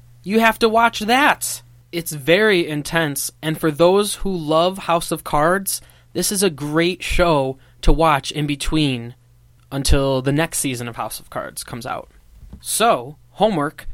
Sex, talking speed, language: male, 160 wpm, English